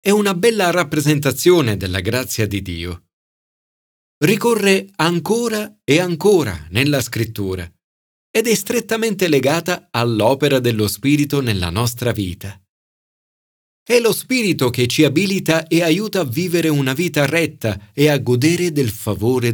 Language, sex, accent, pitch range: Italian, male, native, 95-155 Hz